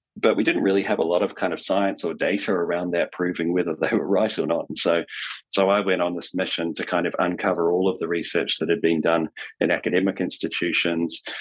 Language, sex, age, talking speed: English, male, 30-49, 235 wpm